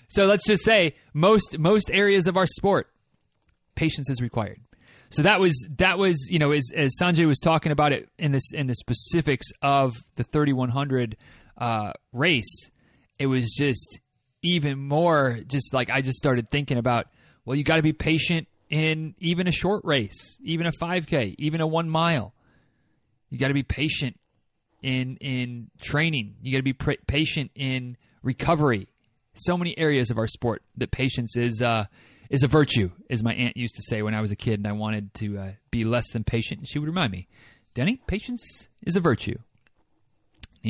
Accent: American